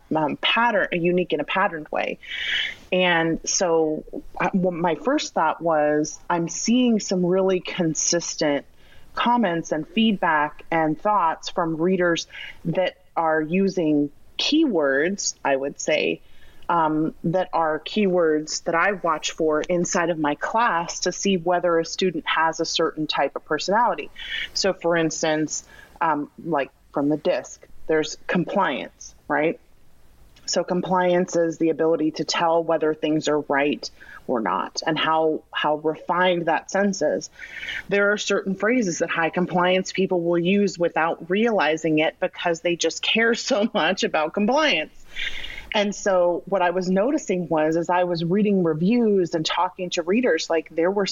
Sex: female